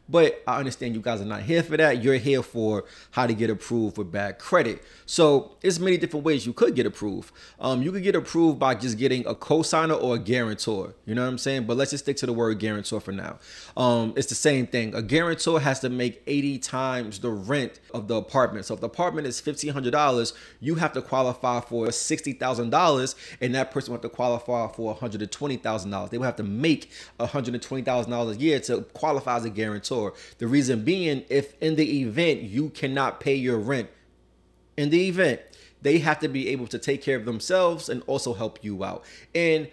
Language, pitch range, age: English, 115-140 Hz, 30-49